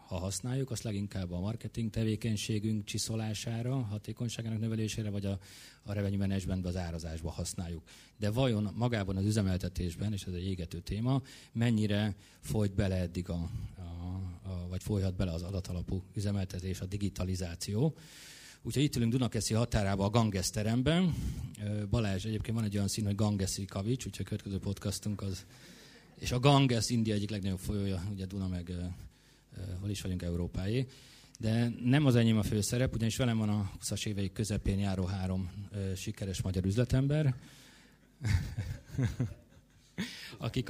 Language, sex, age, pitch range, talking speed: Hungarian, male, 30-49, 95-115 Hz, 145 wpm